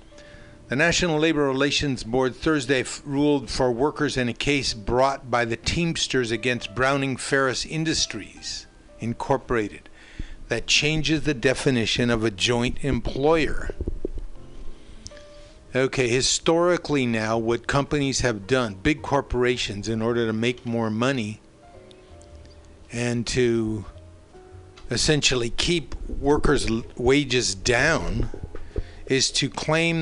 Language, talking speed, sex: English, 110 wpm, male